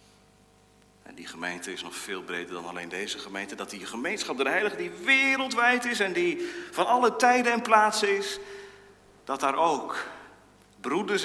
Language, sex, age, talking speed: Dutch, male, 50-69, 165 wpm